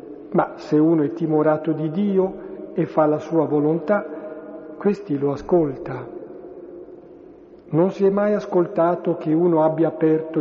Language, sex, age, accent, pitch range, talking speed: Italian, male, 50-69, native, 155-200 Hz, 140 wpm